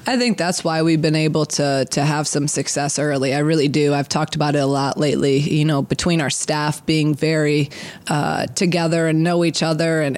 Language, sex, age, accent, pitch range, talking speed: English, female, 20-39, American, 155-175 Hz, 220 wpm